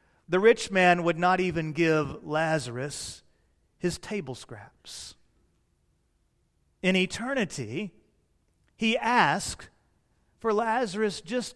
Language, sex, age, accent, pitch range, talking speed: English, male, 40-59, American, 160-220 Hz, 95 wpm